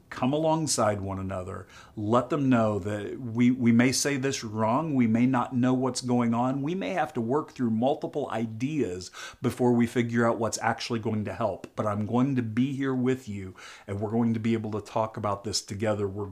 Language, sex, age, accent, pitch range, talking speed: English, male, 40-59, American, 105-130 Hz, 215 wpm